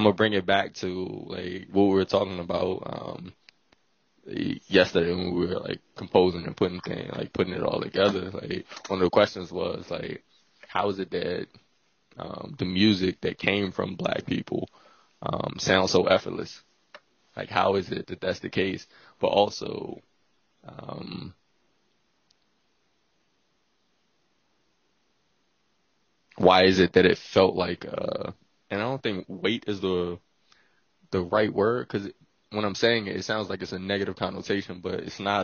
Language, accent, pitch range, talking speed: English, American, 90-100 Hz, 160 wpm